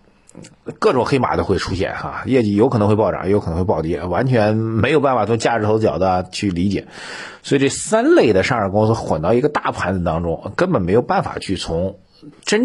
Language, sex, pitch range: Chinese, male, 95-125 Hz